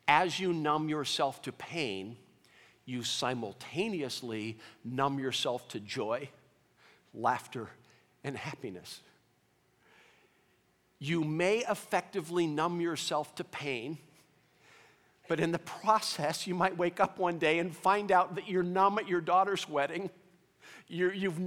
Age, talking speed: 50-69, 120 wpm